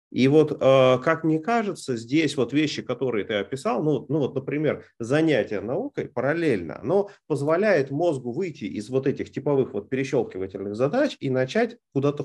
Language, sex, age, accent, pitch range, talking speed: Russian, male, 30-49, native, 120-160 Hz, 160 wpm